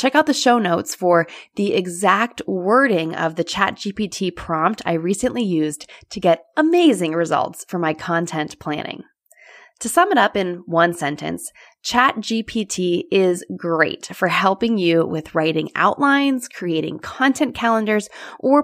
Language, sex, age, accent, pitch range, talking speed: English, female, 20-39, American, 180-265 Hz, 140 wpm